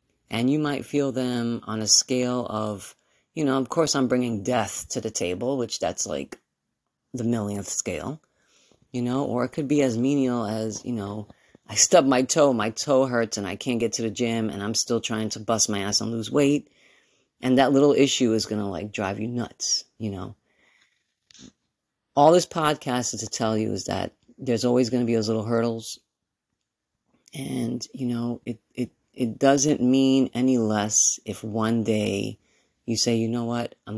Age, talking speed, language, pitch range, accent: 40-59, 195 wpm, English, 110-125 Hz, American